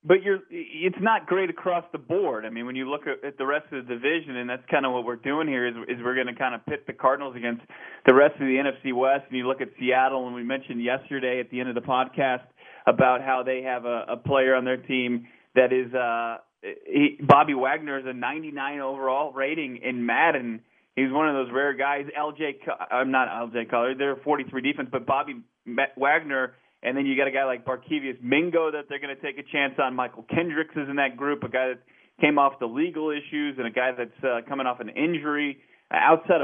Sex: male